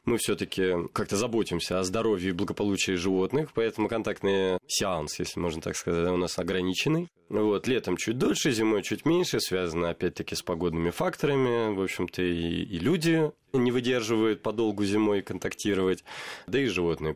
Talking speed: 155 wpm